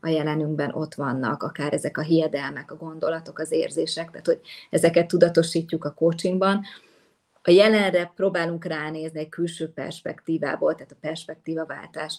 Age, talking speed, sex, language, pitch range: 30-49, 140 wpm, female, Hungarian, 160-190 Hz